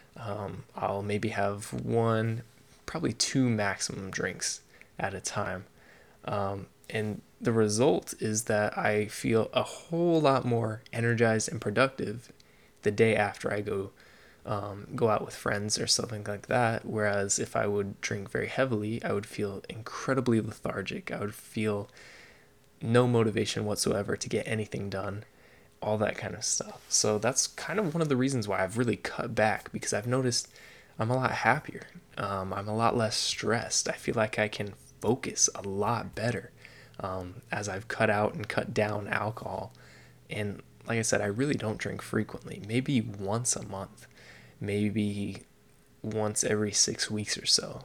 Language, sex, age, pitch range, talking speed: English, male, 20-39, 100-115 Hz, 165 wpm